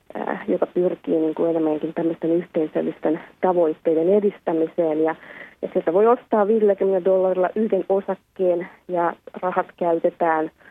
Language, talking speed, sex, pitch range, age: Finnish, 120 wpm, female, 165-195 Hz, 30-49